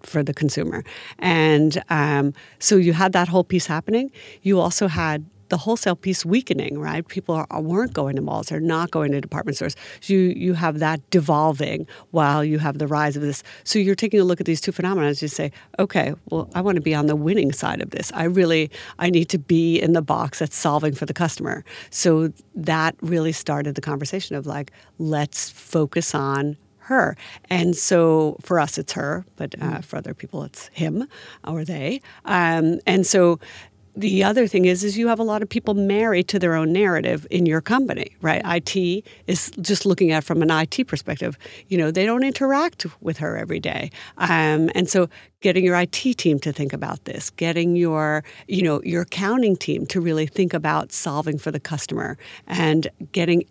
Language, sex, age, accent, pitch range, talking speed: English, female, 50-69, American, 150-185 Hz, 200 wpm